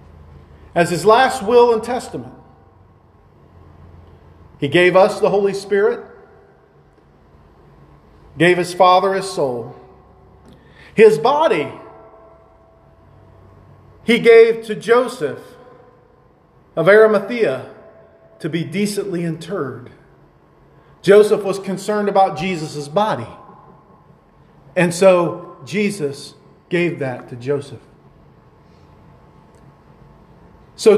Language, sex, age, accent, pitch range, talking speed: English, male, 40-59, American, 125-210 Hz, 85 wpm